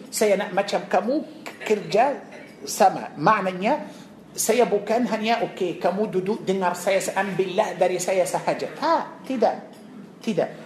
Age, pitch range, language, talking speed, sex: 50-69, 190-235 Hz, Malay, 125 wpm, male